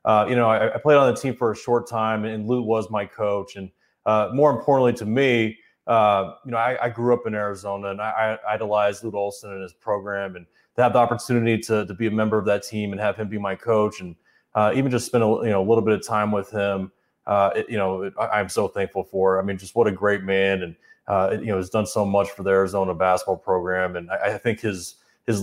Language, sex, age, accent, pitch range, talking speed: English, male, 30-49, American, 100-115 Hz, 265 wpm